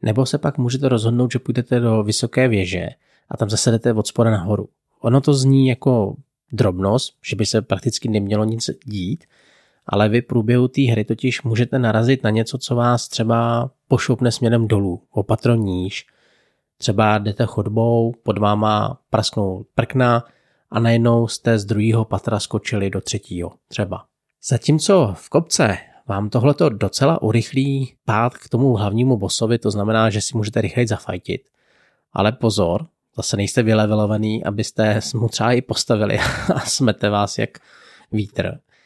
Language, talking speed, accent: Czech, 150 wpm, native